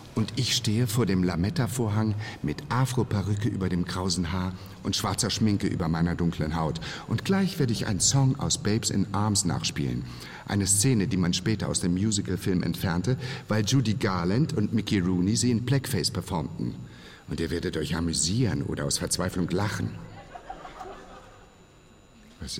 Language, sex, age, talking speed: German, male, 60-79, 155 wpm